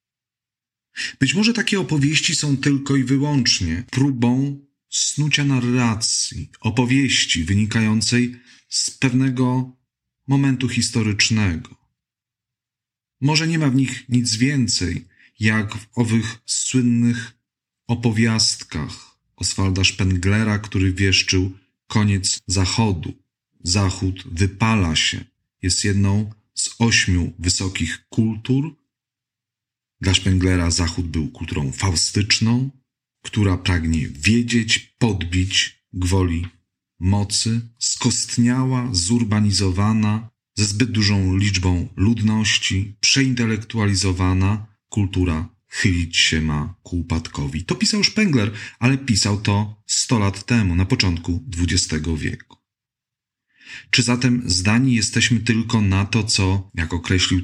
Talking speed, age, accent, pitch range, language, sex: 95 wpm, 40-59, native, 95-125 Hz, Polish, male